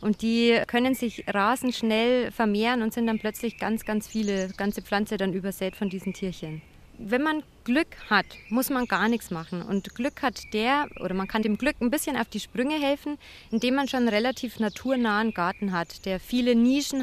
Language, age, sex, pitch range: German, 20-39, female, 210-255 Hz